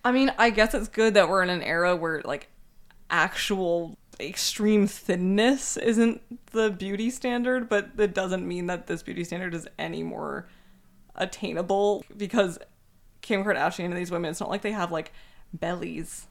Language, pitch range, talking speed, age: English, 180-220 Hz, 165 wpm, 20-39